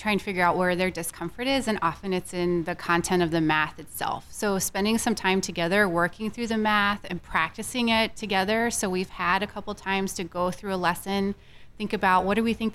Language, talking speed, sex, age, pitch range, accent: English, 225 wpm, female, 20-39, 175-205 Hz, American